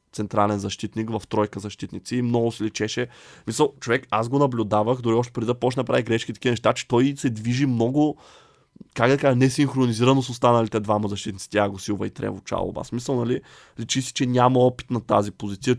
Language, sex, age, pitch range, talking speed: Bulgarian, male, 20-39, 105-130 Hz, 200 wpm